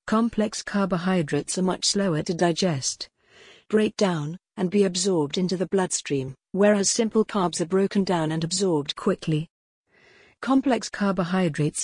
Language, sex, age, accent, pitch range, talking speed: English, female, 50-69, British, 170-200 Hz, 130 wpm